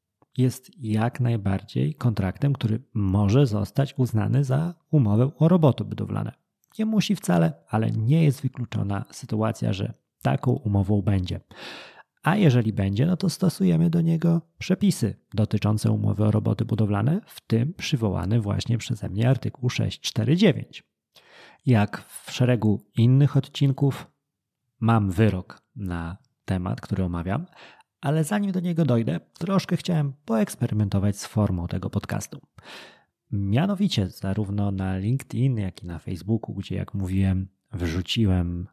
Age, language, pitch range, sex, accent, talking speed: 30-49, Polish, 105-145 Hz, male, native, 125 wpm